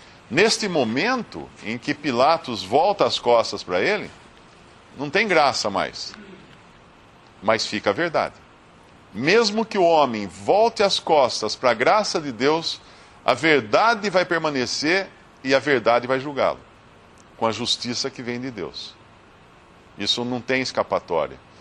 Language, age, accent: Portuguese, 50-69, Brazilian